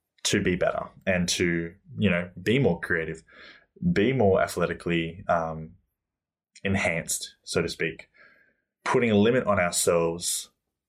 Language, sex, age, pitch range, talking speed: English, male, 20-39, 85-100 Hz, 125 wpm